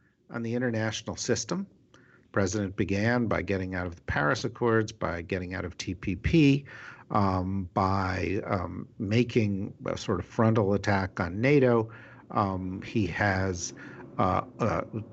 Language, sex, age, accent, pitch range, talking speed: English, male, 50-69, American, 100-125 Hz, 140 wpm